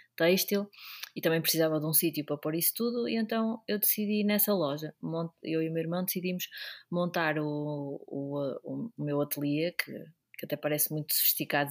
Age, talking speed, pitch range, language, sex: 20-39, 175 wpm, 155-190 Hz, Portuguese, female